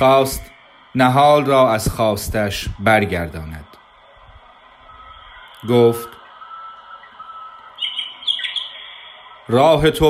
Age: 30-49